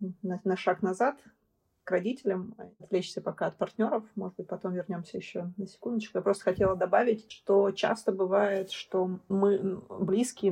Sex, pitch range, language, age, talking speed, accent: female, 170-200 Hz, Russian, 20-39, 150 wpm, native